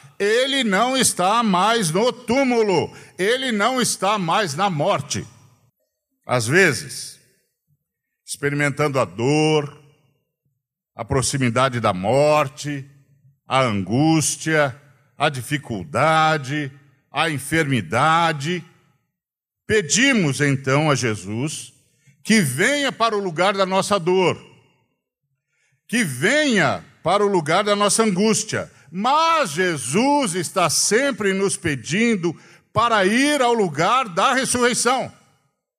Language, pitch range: Portuguese, 140-220 Hz